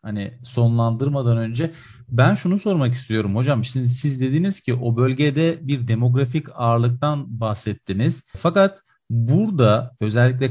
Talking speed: 120 wpm